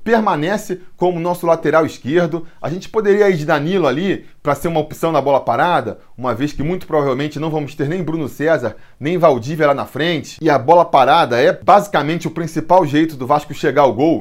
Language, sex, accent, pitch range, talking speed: Portuguese, male, Brazilian, 145-180 Hz, 205 wpm